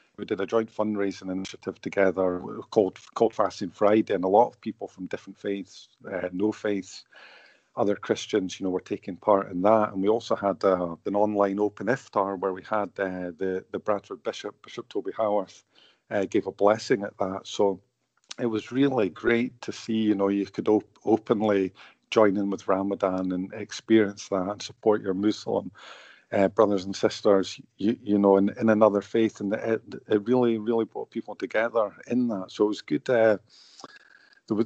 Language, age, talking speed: English, 50-69, 190 wpm